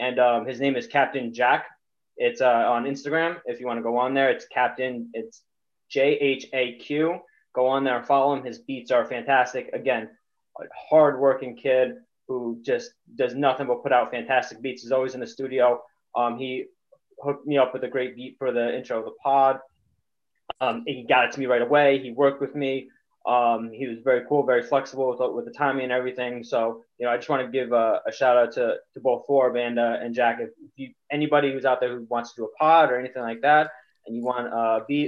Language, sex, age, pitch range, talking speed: English, male, 20-39, 125-145 Hz, 225 wpm